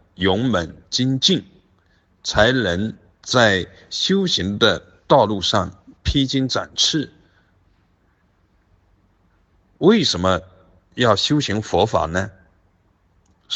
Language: Chinese